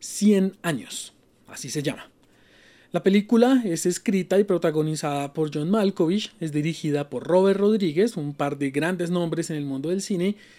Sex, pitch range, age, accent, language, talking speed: male, 150-200 Hz, 30-49, Colombian, Spanish, 165 wpm